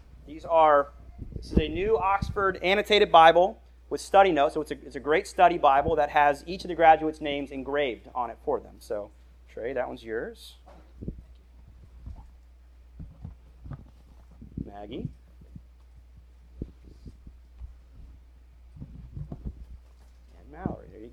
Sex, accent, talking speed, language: male, American, 120 wpm, English